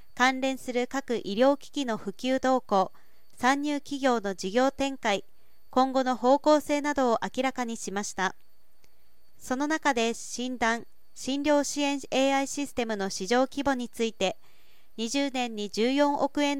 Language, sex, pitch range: Japanese, female, 215-270 Hz